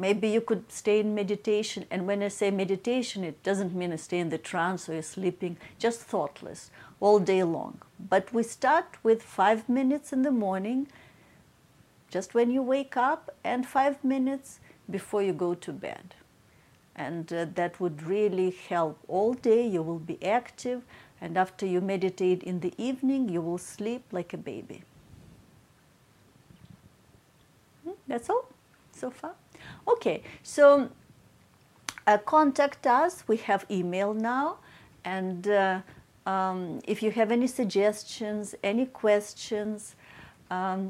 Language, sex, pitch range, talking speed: English, female, 185-240 Hz, 140 wpm